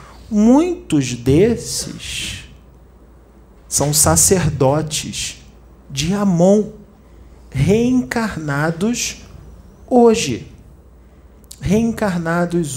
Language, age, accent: Portuguese, 40-59, Brazilian